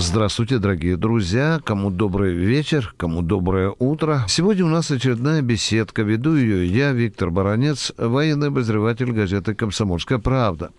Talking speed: 135 wpm